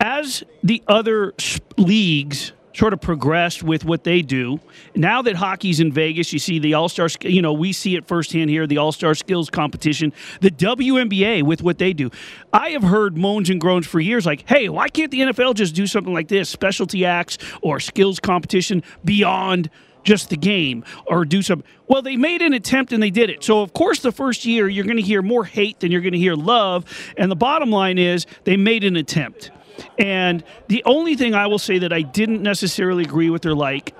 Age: 40-59